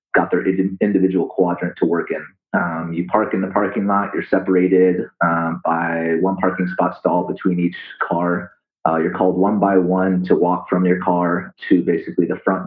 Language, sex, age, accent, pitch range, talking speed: English, male, 30-49, American, 85-95 Hz, 190 wpm